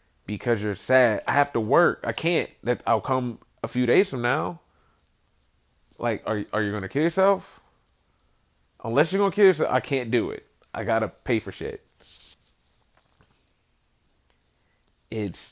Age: 30-49